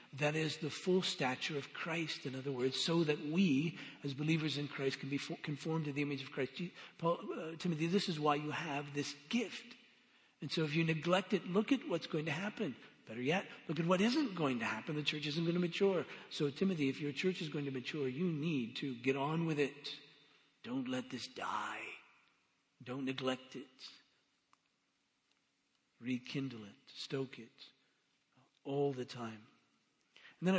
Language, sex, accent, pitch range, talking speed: English, male, American, 135-170 Hz, 180 wpm